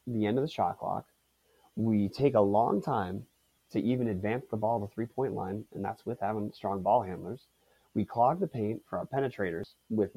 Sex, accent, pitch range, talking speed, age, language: male, American, 100-125 Hz, 200 wpm, 30-49, English